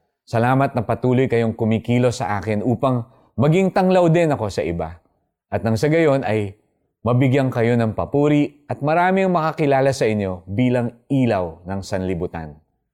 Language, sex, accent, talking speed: Filipino, male, native, 150 wpm